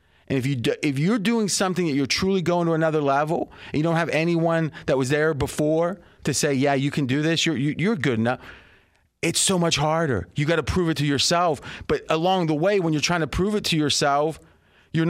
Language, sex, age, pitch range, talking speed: English, male, 30-49, 135-175 Hz, 225 wpm